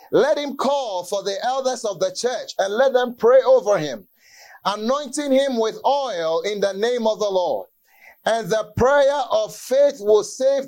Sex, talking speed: male, 180 wpm